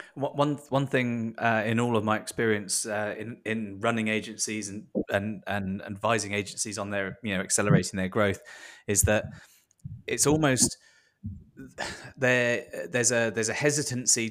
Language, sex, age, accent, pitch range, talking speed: English, male, 20-39, British, 100-115 Hz, 150 wpm